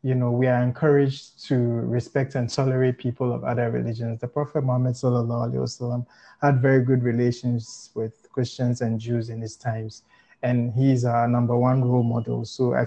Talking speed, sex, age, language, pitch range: 175 wpm, male, 20-39, English, 120-140 Hz